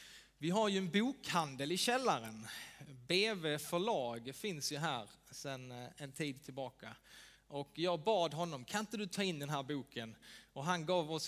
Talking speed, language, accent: 165 wpm, Swedish, Norwegian